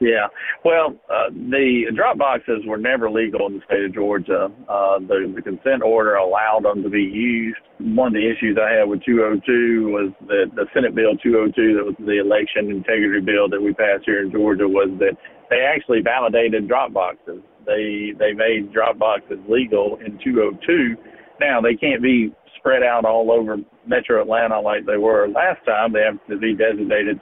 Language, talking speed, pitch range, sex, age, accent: English, 185 wpm, 105-115 Hz, male, 50-69, American